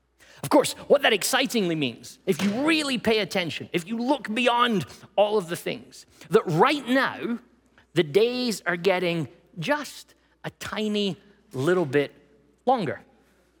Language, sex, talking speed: English, male, 140 wpm